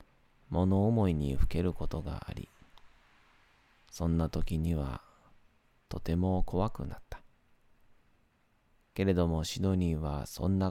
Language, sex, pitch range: Japanese, male, 80-105 Hz